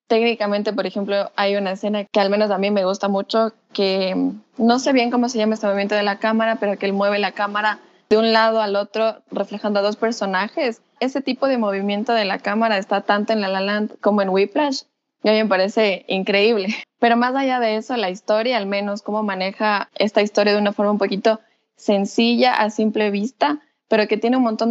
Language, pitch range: Spanish, 195-225 Hz